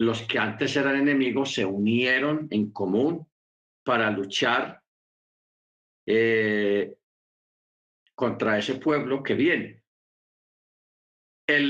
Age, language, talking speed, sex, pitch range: 50-69, Spanish, 90 wpm, male, 120-160 Hz